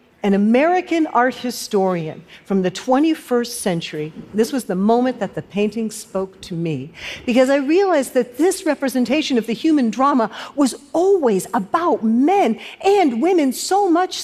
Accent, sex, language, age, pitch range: American, female, Korean, 50-69, 205-285 Hz